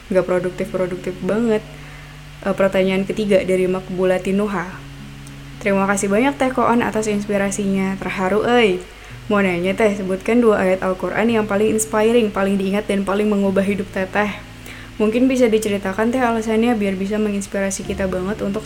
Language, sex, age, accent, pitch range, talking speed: Indonesian, female, 20-39, native, 190-215 Hz, 150 wpm